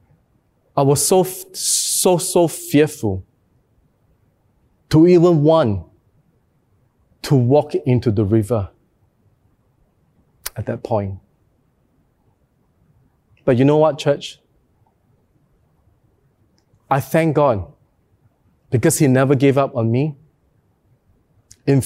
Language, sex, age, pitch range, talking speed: English, male, 30-49, 110-150 Hz, 90 wpm